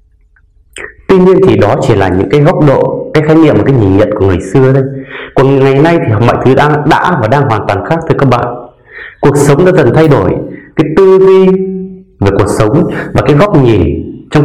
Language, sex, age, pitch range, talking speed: Vietnamese, male, 30-49, 100-160 Hz, 220 wpm